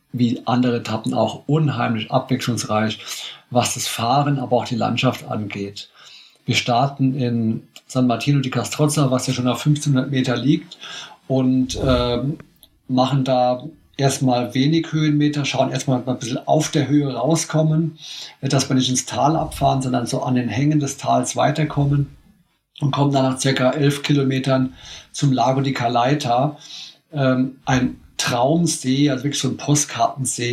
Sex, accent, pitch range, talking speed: male, German, 125-150 Hz, 155 wpm